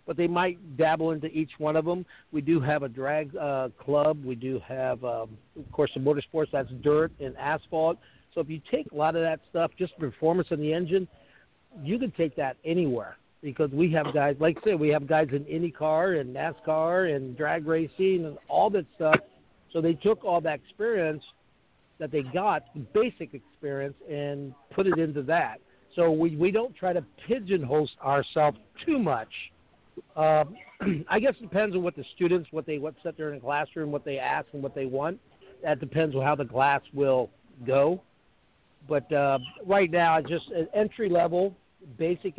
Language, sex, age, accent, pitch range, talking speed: English, male, 60-79, American, 145-170 Hz, 190 wpm